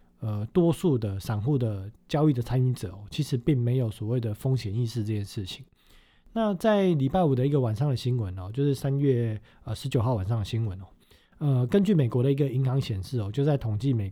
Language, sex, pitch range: Chinese, male, 110-145 Hz